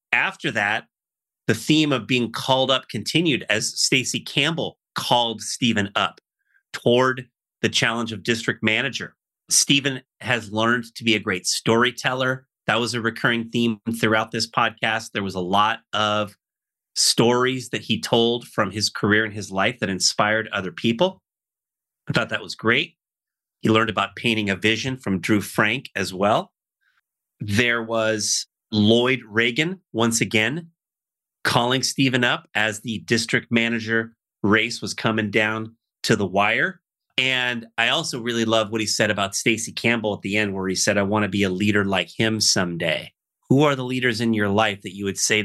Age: 30-49